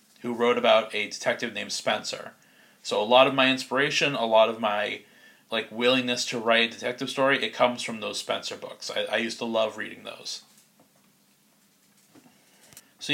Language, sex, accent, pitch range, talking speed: English, male, American, 115-135 Hz, 175 wpm